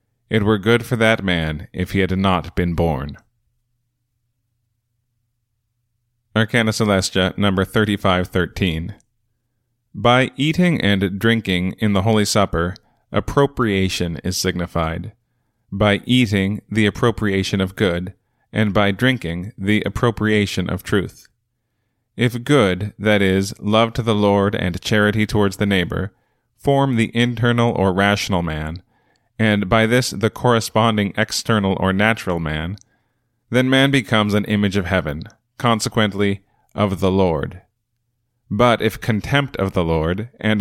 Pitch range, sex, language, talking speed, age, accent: 95-115 Hz, male, English, 125 wpm, 30-49, American